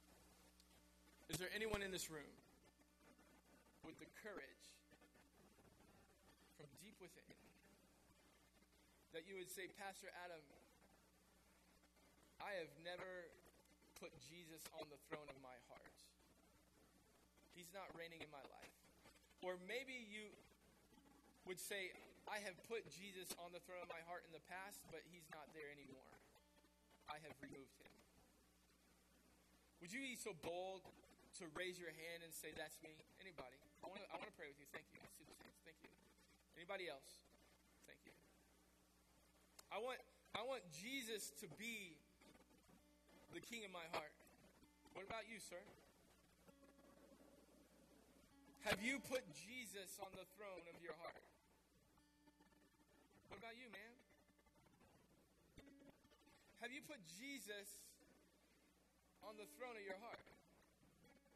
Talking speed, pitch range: 130 wpm, 140-215 Hz